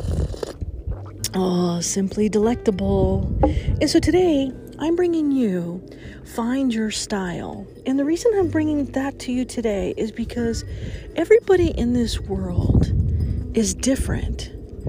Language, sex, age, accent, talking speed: English, female, 40-59, American, 115 wpm